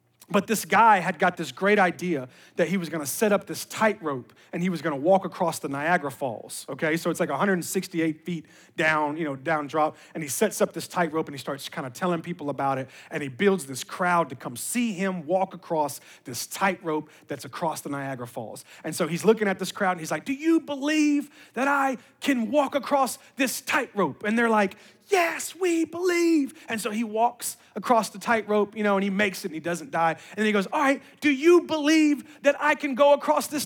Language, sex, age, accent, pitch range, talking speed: English, male, 30-49, American, 170-275 Hz, 230 wpm